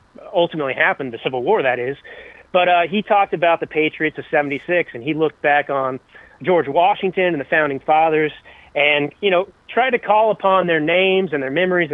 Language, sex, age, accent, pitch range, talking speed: English, male, 30-49, American, 150-190 Hz, 200 wpm